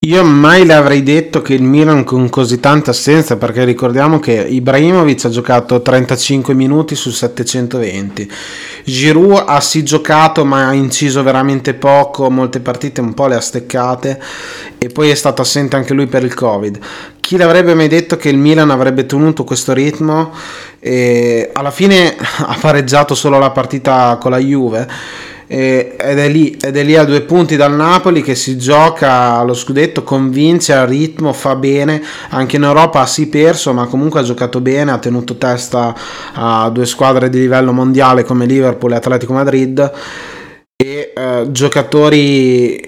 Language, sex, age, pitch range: Italian, male, 30-49, 125-150 Hz